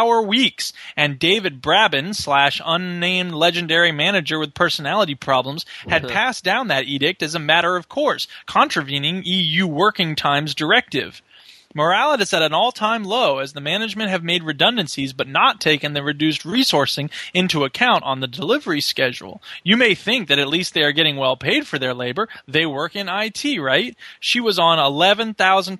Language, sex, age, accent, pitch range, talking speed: English, male, 20-39, American, 150-200 Hz, 170 wpm